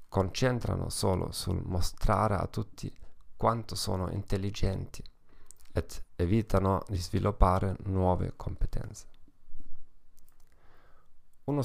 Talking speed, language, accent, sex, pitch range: 80 wpm, Italian, native, male, 90-110 Hz